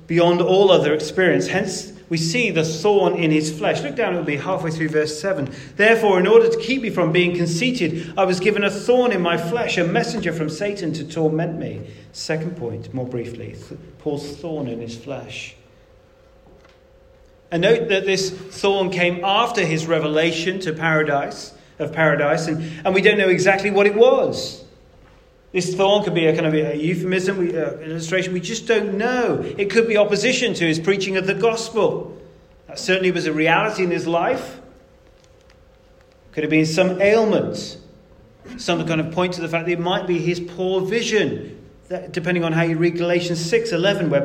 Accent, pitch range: British, 160-195 Hz